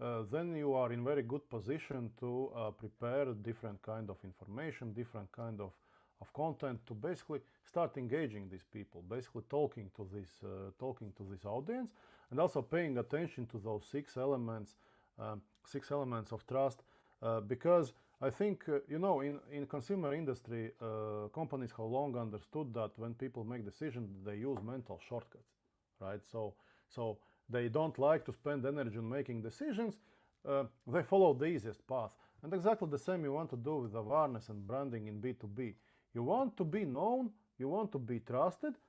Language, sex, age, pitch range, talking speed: English, male, 40-59, 115-155 Hz, 175 wpm